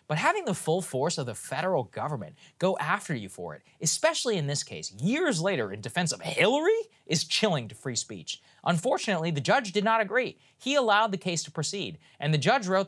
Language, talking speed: English, 210 wpm